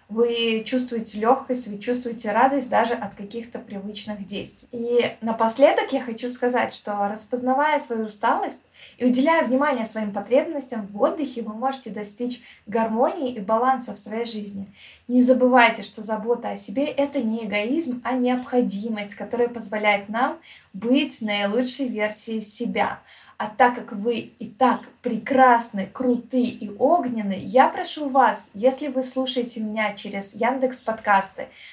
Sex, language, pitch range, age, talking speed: female, Russian, 215-255 Hz, 20-39, 140 wpm